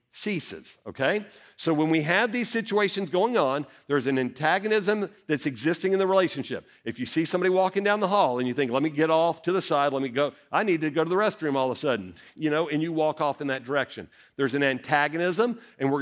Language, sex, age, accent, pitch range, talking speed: English, male, 50-69, American, 135-195 Hz, 240 wpm